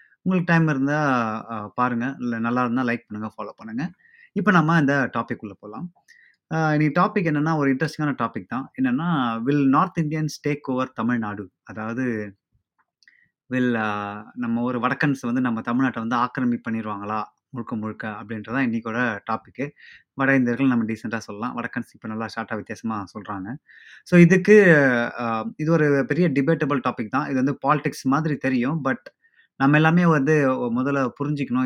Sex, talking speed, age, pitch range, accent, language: male, 145 wpm, 20-39, 115-145 Hz, native, Tamil